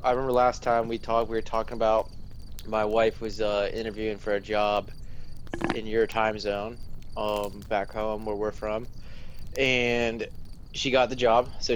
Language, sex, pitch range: English, male, 105-120 Hz